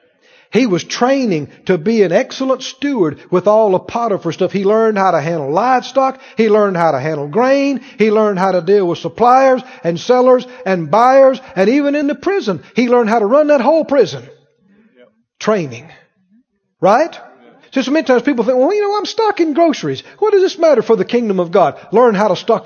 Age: 50-69